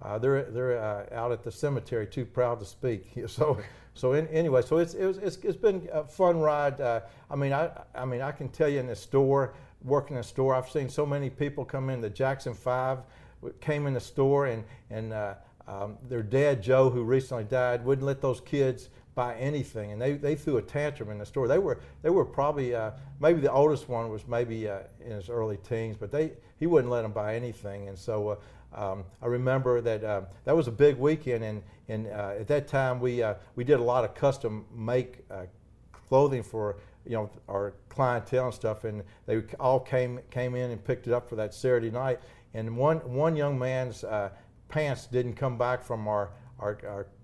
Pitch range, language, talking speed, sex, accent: 110-135 Hz, English, 220 wpm, male, American